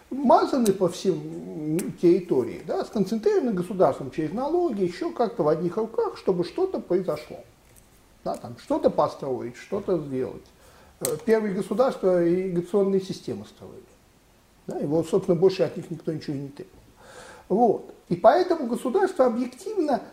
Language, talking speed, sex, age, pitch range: Russian, 130 wpm, male, 50-69, 180-250 Hz